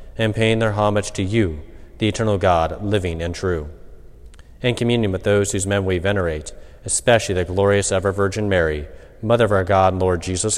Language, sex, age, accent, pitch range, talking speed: English, male, 40-59, American, 85-105 Hz, 180 wpm